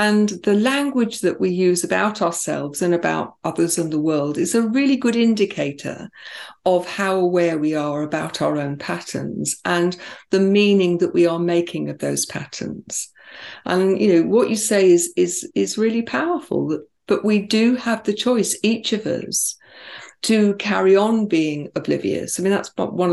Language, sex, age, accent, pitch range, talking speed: English, female, 50-69, British, 175-230 Hz, 170 wpm